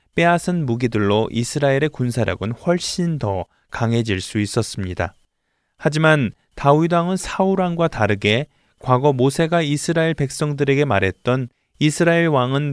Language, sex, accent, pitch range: Korean, male, native, 110-155 Hz